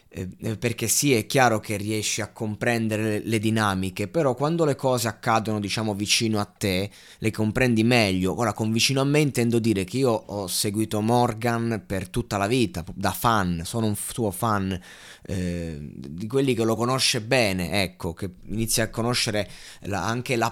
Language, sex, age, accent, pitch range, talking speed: Italian, male, 20-39, native, 100-120 Hz, 180 wpm